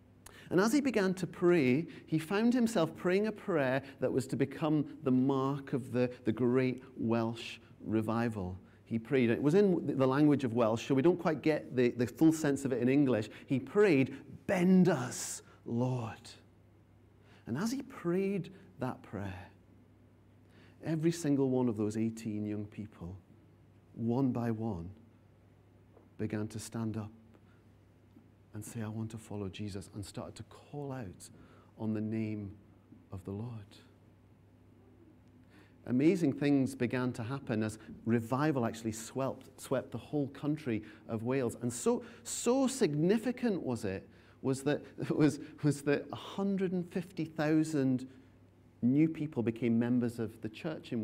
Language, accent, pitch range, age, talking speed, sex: English, British, 110-145 Hz, 40-59, 150 wpm, male